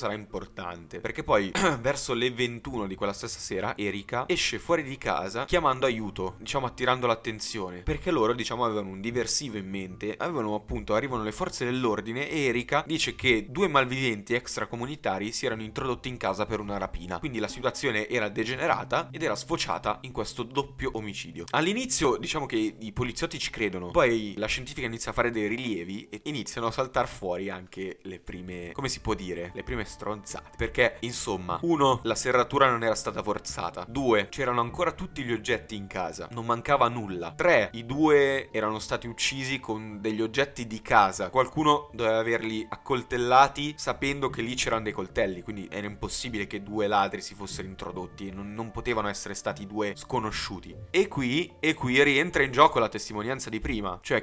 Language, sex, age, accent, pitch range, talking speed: Italian, male, 20-39, native, 105-135 Hz, 175 wpm